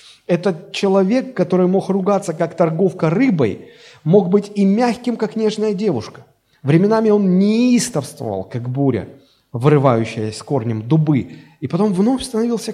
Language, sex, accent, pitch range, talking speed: Russian, male, native, 130-195 Hz, 130 wpm